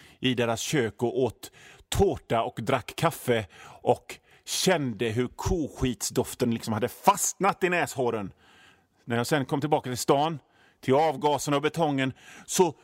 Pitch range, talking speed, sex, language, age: 145-210 Hz, 140 wpm, male, Swedish, 30-49